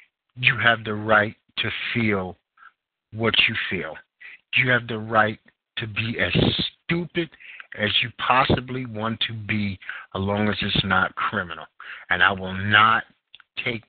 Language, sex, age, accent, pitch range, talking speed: English, male, 50-69, American, 105-135 Hz, 145 wpm